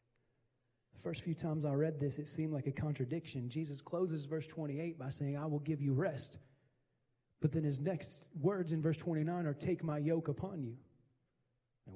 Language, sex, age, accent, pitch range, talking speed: English, male, 30-49, American, 125-155 Hz, 185 wpm